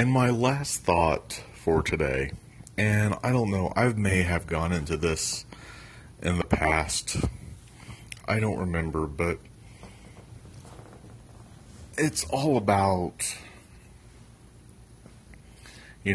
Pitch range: 80-105 Hz